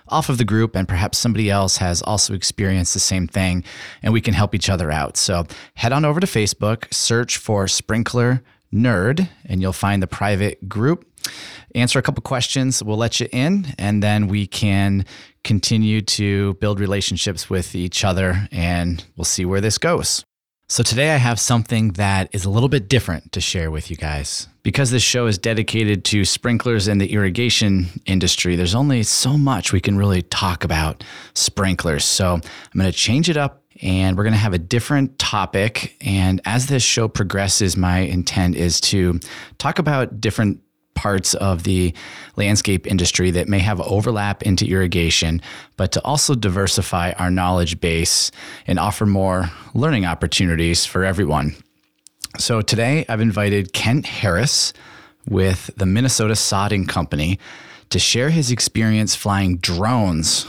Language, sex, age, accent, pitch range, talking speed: English, male, 30-49, American, 90-115 Hz, 165 wpm